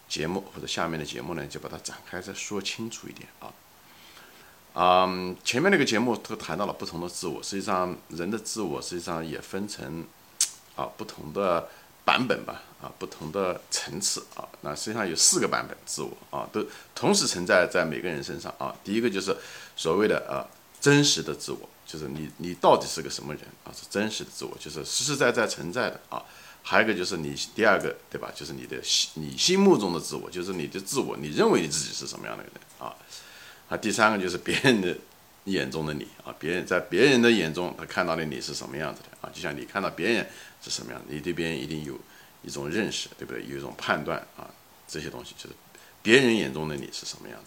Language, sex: Chinese, male